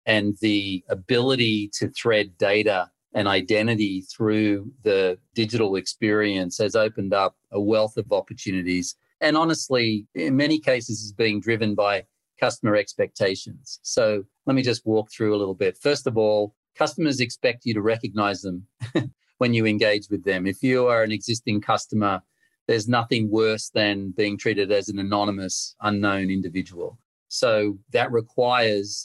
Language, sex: English, male